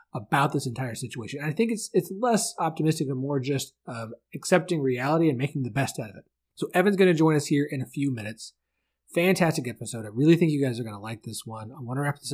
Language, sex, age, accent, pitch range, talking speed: English, male, 30-49, American, 115-155 Hz, 265 wpm